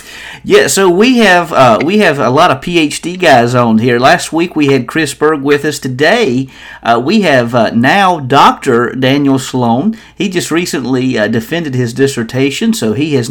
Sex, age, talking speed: male, 40-59, 185 wpm